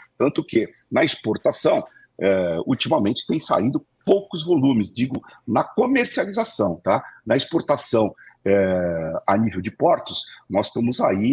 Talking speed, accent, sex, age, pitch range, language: 125 wpm, Brazilian, male, 50-69, 100-130 Hz, Portuguese